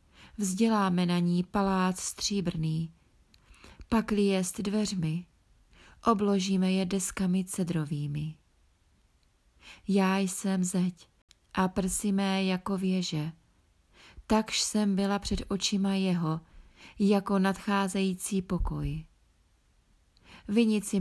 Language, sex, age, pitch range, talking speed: Czech, female, 30-49, 175-200 Hz, 85 wpm